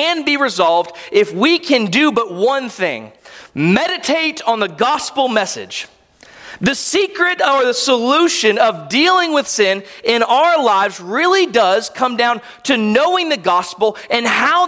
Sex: male